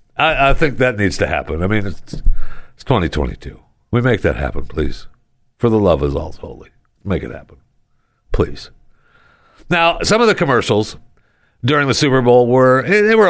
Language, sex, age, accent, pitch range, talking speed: English, male, 60-79, American, 80-130 Hz, 180 wpm